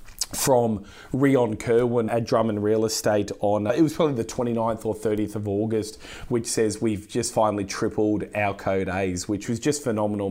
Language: English